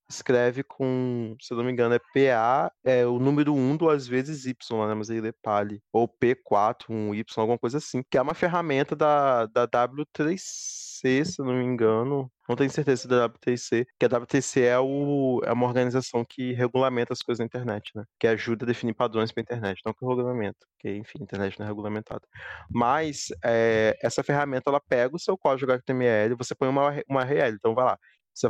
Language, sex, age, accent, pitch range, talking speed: Portuguese, male, 20-39, Brazilian, 120-145 Hz, 205 wpm